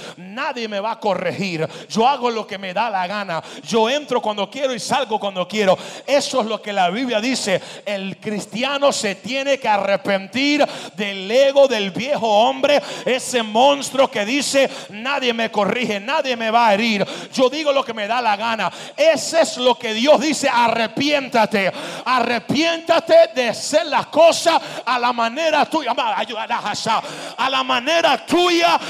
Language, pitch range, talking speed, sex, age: English, 210-280 Hz, 165 wpm, male, 40-59